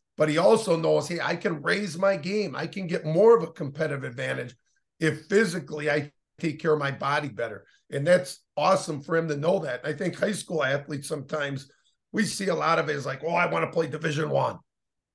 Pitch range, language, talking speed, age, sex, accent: 150-190 Hz, English, 225 wpm, 50-69, male, American